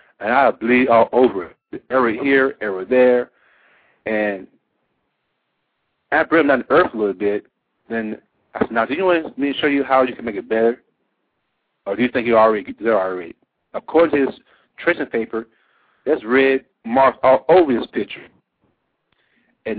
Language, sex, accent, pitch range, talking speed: English, male, American, 110-135 Hz, 180 wpm